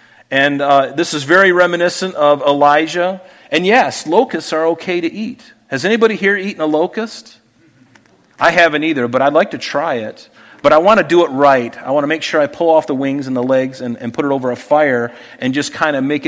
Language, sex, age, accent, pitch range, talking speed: English, male, 40-59, American, 140-205 Hz, 230 wpm